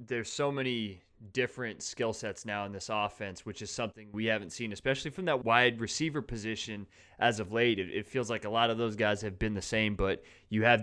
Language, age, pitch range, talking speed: English, 20-39, 100-115 Hz, 225 wpm